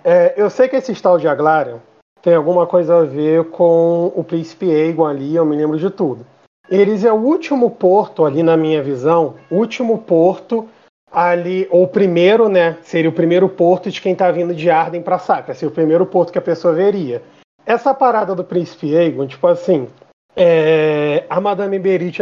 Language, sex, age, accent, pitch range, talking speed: Portuguese, male, 40-59, Brazilian, 165-215 Hz, 190 wpm